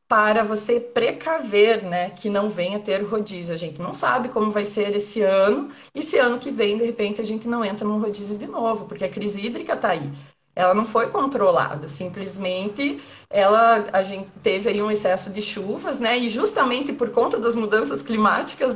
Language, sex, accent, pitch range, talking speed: Portuguese, female, Brazilian, 205-250 Hz, 190 wpm